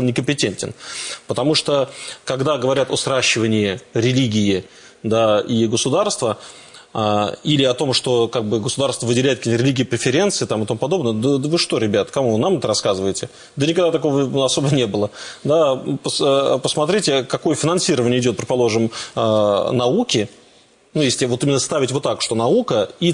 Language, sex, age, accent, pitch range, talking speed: Russian, male, 20-39, native, 120-150 Hz, 150 wpm